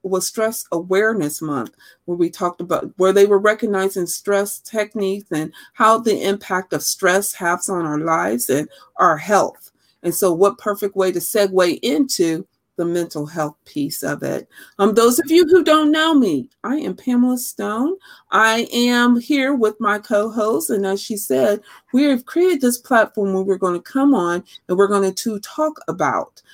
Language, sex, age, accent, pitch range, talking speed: English, female, 40-59, American, 175-225 Hz, 180 wpm